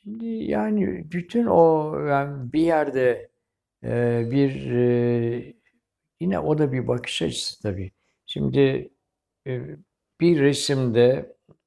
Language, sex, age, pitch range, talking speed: Turkish, male, 60-79, 115-140 Hz, 105 wpm